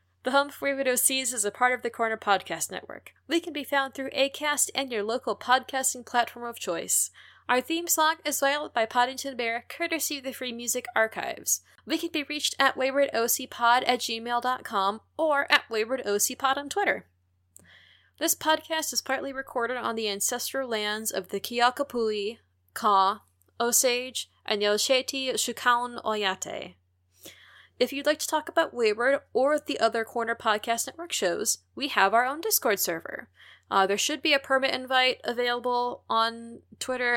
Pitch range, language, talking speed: 210-270 Hz, English, 160 wpm